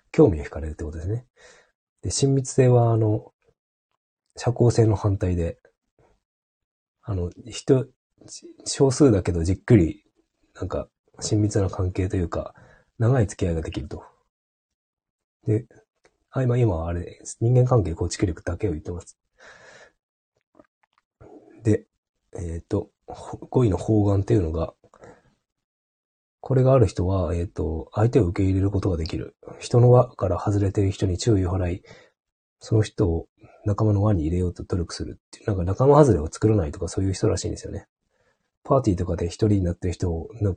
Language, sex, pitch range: Japanese, male, 85-115 Hz